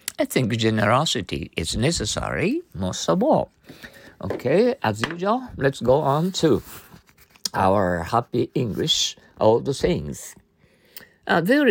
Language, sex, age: Japanese, male, 60-79